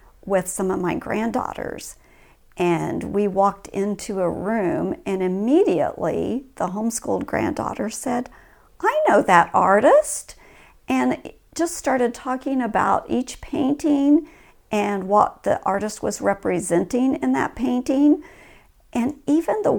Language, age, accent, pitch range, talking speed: English, 50-69, American, 220-290 Hz, 120 wpm